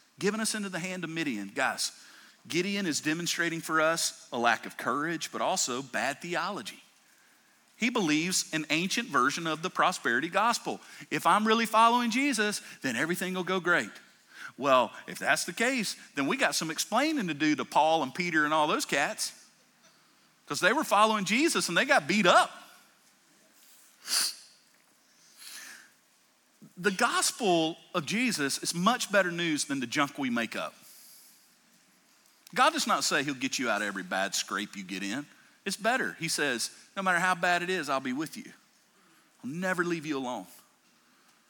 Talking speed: 170 wpm